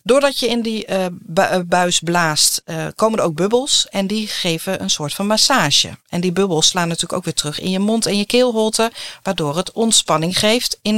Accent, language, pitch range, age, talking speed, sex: Dutch, Dutch, 160-210 Hz, 40-59, 195 wpm, female